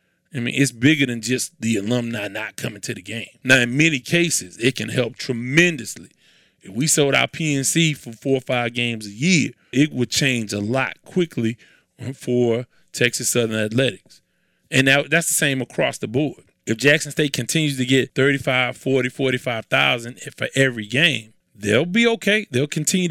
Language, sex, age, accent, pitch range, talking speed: English, male, 30-49, American, 125-170 Hz, 175 wpm